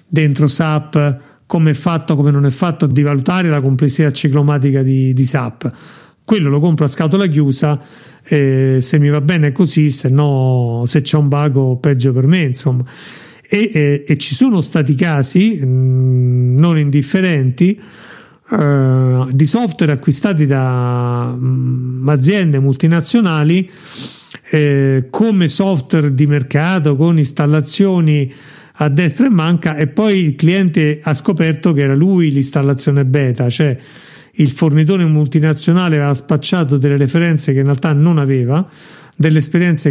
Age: 40-59